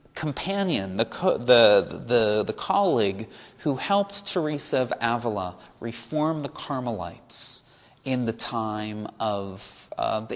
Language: English